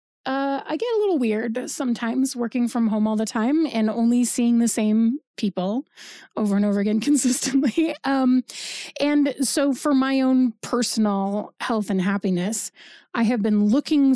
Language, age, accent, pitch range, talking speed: English, 30-49, American, 205-265 Hz, 160 wpm